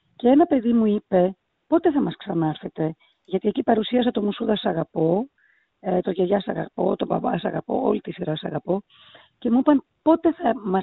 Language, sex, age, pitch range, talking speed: Greek, female, 40-59, 180-235 Hz, 205 wpm